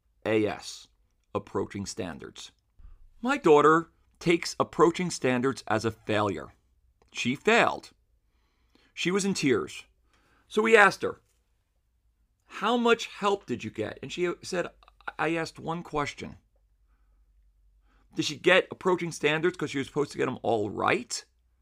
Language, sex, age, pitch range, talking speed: English, male, 40-59, 95-155 Hz, 135 wpm